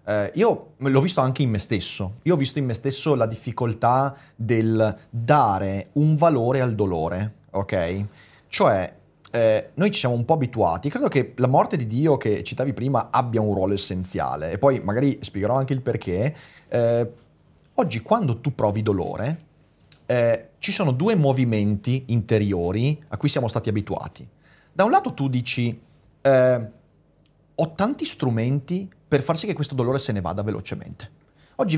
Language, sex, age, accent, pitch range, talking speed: Italian, male, 30-49, native, 105-145 Hz, 170 wpm